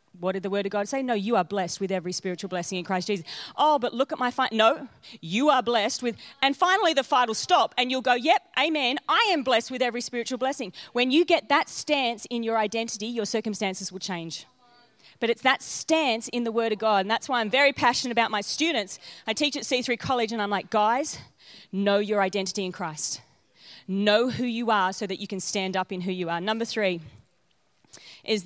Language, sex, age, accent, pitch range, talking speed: English, female, 30-49, Australian, 185-235 Hz, 230 wpm